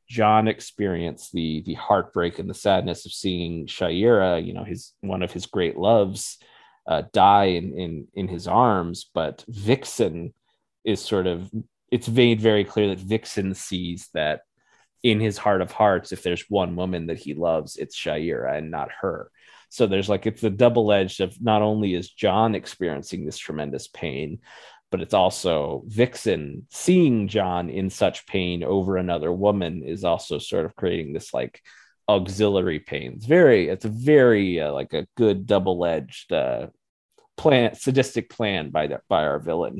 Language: English